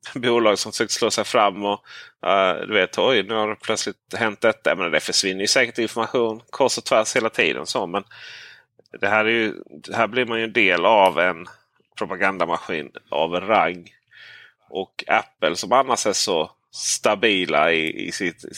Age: 30-49